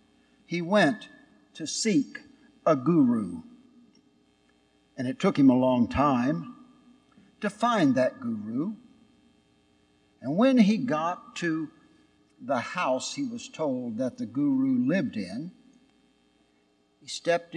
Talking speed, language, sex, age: 115 wpm, English, male, 60-79